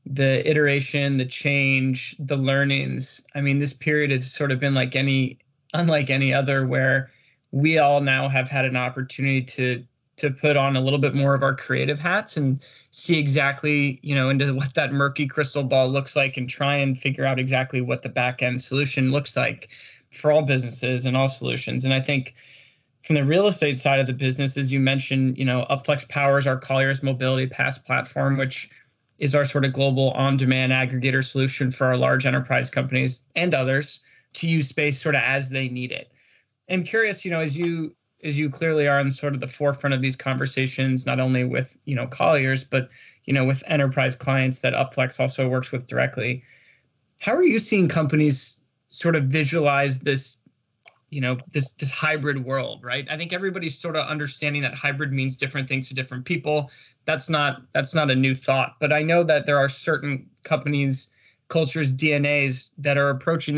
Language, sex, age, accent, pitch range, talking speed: English, male, 20-39, American, 130-145 Hz, 195 wpm